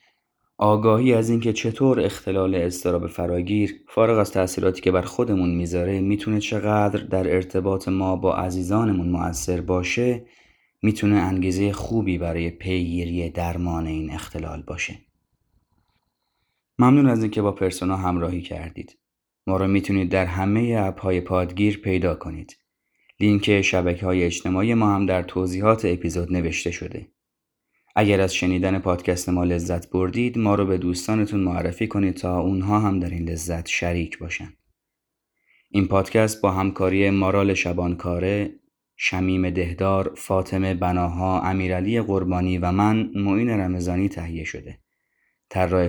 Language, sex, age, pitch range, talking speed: Persian, male, 30-49, 90-105 Hz, 130 wpm